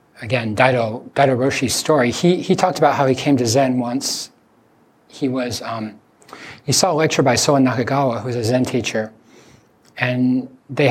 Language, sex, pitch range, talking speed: English, male, 115-140 Hz, 170 wpm